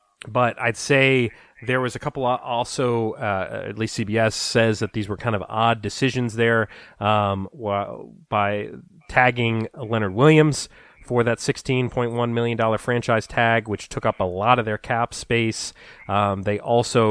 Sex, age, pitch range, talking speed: male, 30-49, 105-135 Hz, 155 wpm